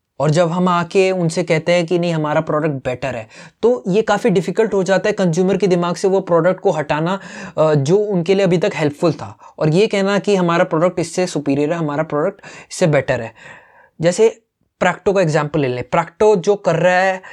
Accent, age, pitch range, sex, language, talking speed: native, 20-39, 155-195 Hz, male, Hindi, 210 wpm